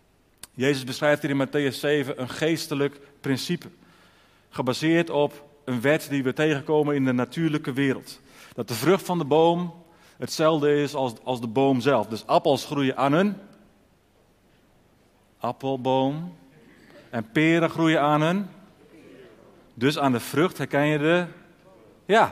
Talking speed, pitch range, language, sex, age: 140 wpm, 130-160 Hz, Dutch, male, 40-59